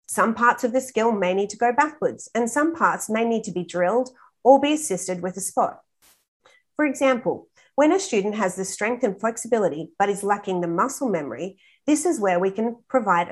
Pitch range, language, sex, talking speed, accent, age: 185-250 Hz, English, female, 205 wpm, Australian, 40-59